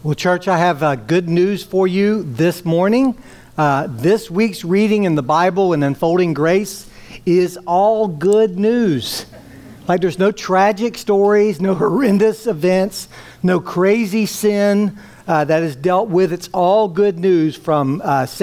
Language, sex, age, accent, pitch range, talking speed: English, male, 60-79, American, 160-200 Hz, 155 wpm